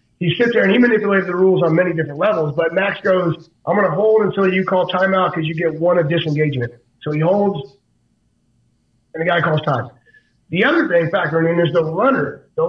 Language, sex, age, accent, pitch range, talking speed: English, male, 30-49, American, 145-185 Hz, 215 wpm